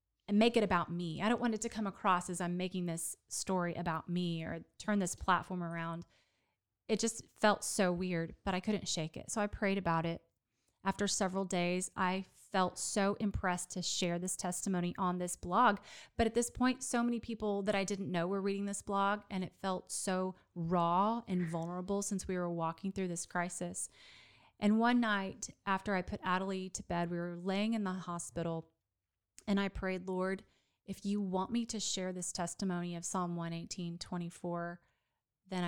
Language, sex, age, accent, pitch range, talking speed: English, female, 30-49, American, 175-205 Hz, 190 wpm